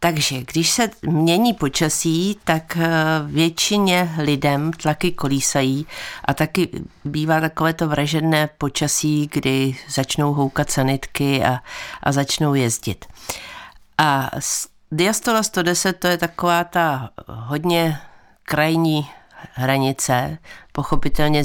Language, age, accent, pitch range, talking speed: Czech, 50-69, native, 145-175 Hz, 100 wpm